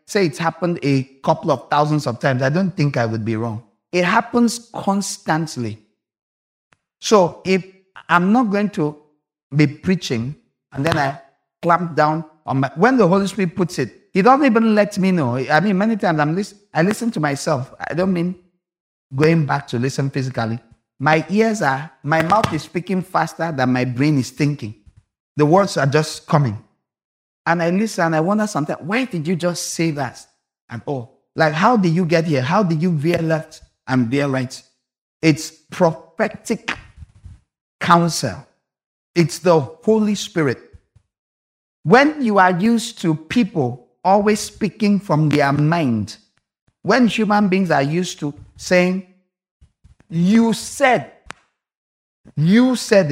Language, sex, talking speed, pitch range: English, male, 155 wpm, 135-190 Hz